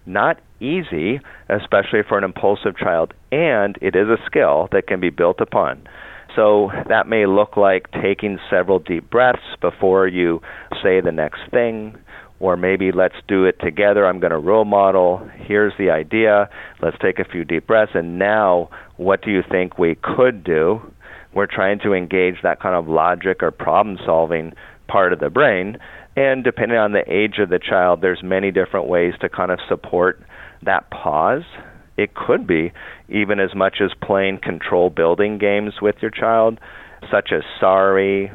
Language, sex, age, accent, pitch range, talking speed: English, male, 40-59, American, 90-105 Hz, 175 wpm